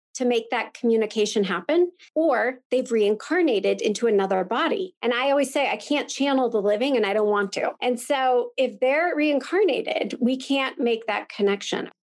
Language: English